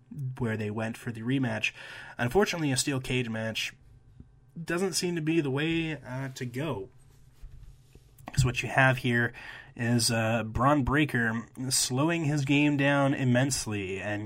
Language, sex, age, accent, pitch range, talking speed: English, male, 20-39, American, 110-130 Hz, 145 wpm